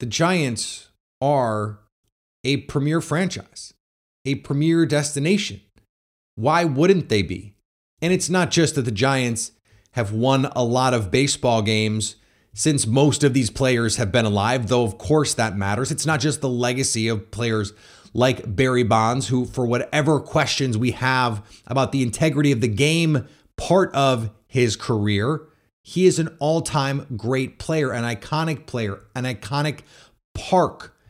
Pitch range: 110-155 Hz